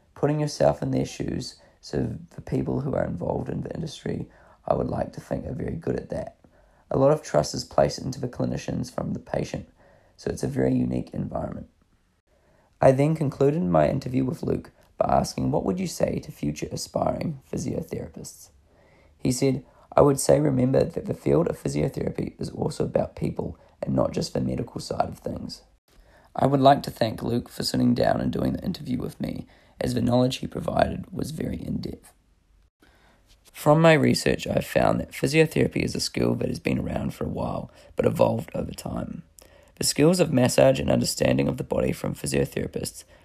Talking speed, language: 190 wpm, English